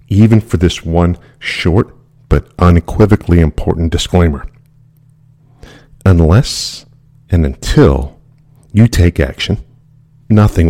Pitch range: 85-135 Hz